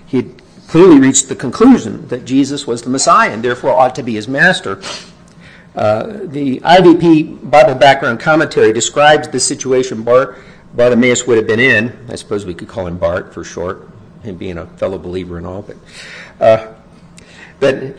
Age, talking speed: 50-69, 170 wpm